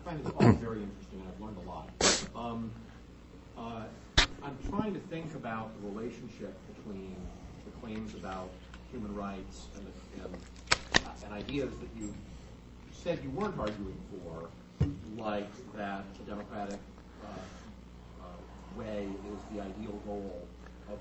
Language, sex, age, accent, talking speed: English, male, 40-59, American, 145 wpm